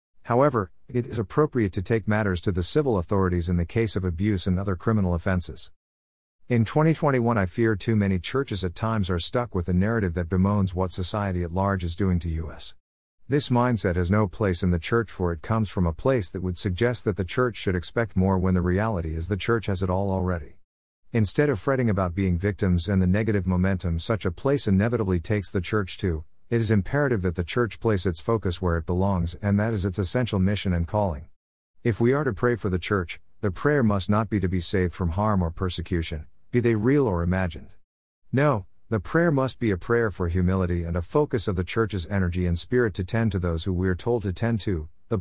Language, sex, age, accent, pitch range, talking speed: English, male, 50-69, American, 90-115 Hz, 225 wpm